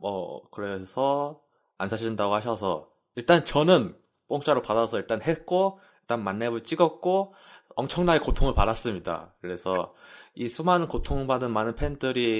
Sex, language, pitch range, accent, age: male, Korean, 95-130 Hz, native, 20-39